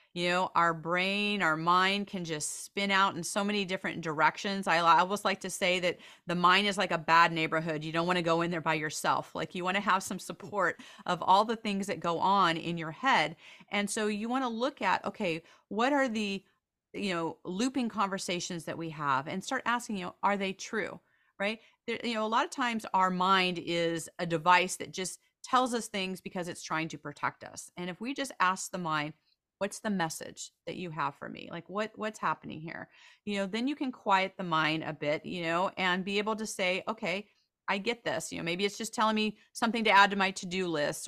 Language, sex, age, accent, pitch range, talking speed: English, female, 40-59, American, 165-205 Hz, 230 wpm